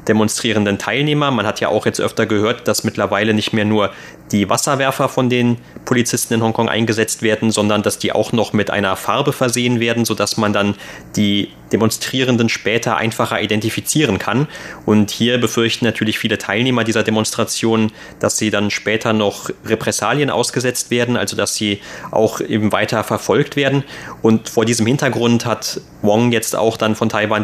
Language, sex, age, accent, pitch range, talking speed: German, male, 30-49, German, 105-120 Hz, 170 wpm